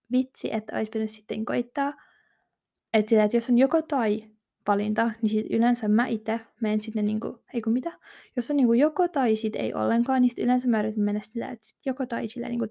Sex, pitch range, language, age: female, 215-255 Hz, Finnish, 20-39